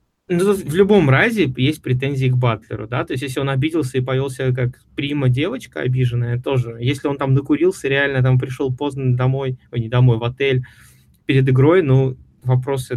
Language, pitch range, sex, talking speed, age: Russian, 120-135 Hz, male, 175 wpm, 20-39